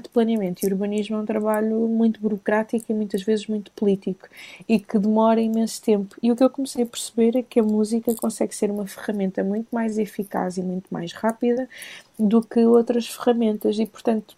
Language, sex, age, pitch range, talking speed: Portuguese, female, 20-39, 190-220 Hz, 195 wpm